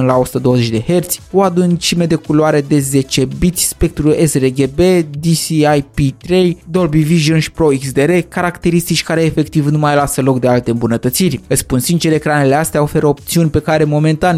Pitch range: 135-165 Hz